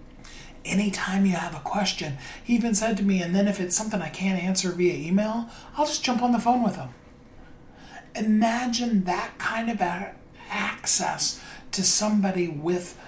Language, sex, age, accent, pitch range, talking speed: English, male, 40-59, American, 155-190 Hz, 165 wpm